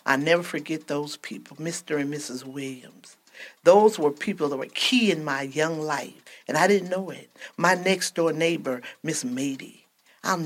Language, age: English, 50-69